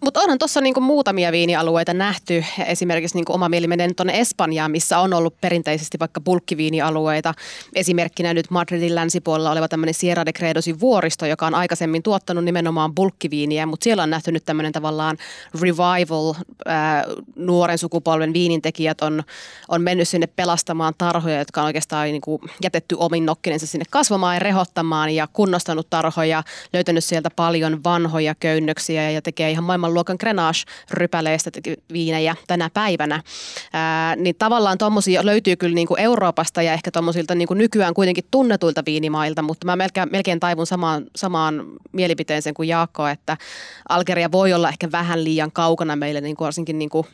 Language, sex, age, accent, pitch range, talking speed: Finnish, female, 20-39, native, 160-180 Hz, 150 wpm